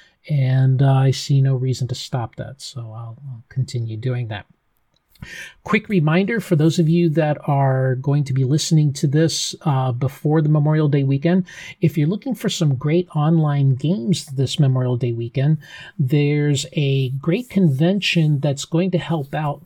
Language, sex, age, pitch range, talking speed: English, male, 40-59, 135-160 Hz, 170 wpm